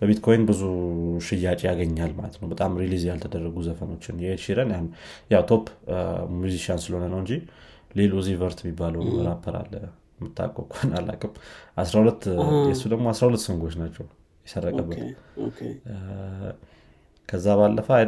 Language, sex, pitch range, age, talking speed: Amharic, male, 85-105 Hz, 20-39, 85 wpm